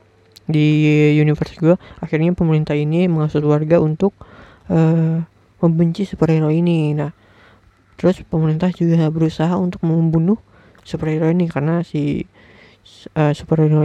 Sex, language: female, Indonesian